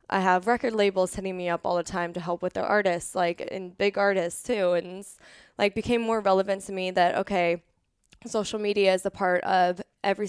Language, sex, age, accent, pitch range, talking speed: English, female, 10-29, American, 180-195 Hz, 210 wpm